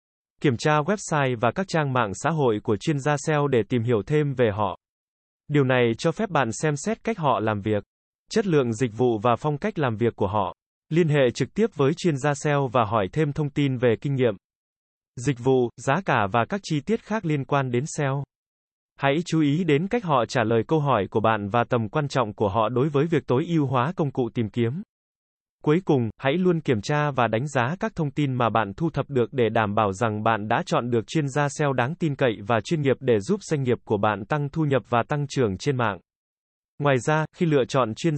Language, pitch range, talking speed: Vietnamese, 120-155 Hz, 240 wpm